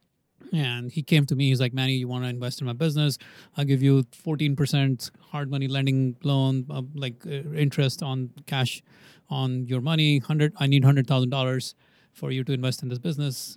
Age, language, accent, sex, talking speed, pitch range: 30-49, English, Indian, male, 190 wpm, 125-155 Hz